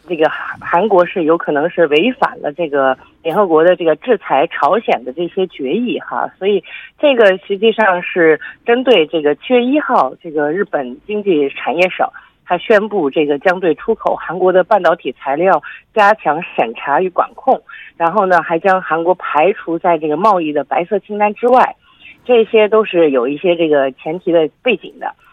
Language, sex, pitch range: Korean, female, 160-215 Hz